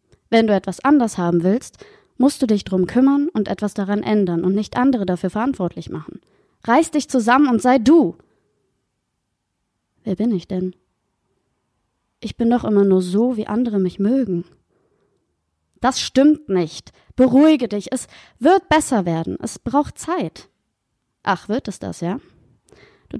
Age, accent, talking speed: 20-39, German, 155 wpm